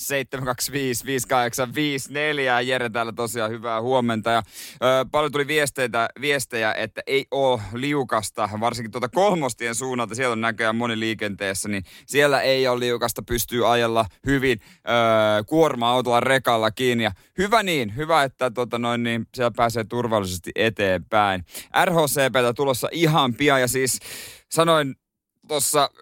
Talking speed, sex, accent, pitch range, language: 125 wpm, male, native, 115-140 Hz, Finnish